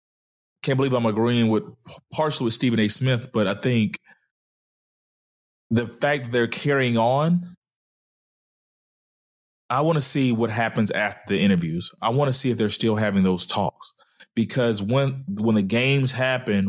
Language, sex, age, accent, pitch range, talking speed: English, male, 20-39, American, 110-135 Hz, 160 wpm